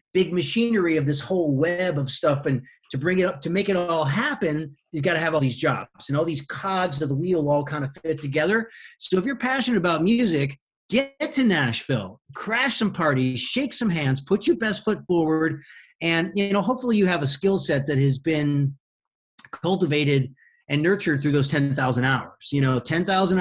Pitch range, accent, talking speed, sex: 140-185 Hz, American, 205 wpm, male